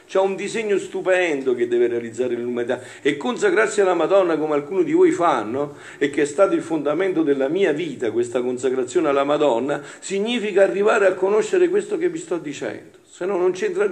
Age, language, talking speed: 50-69, Italian, 185 wpm